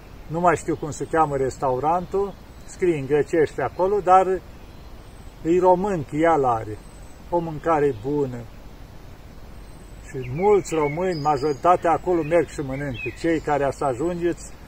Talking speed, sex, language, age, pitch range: 125 wpm, male, Romanian, 50-69, 135-175 Hz